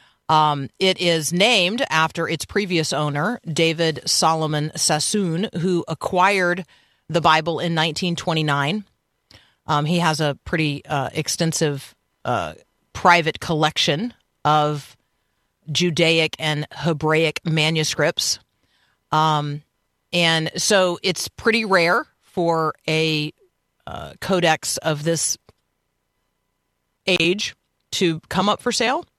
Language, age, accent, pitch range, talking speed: English, 40-59, American, 150-185 Hz, 105 wpm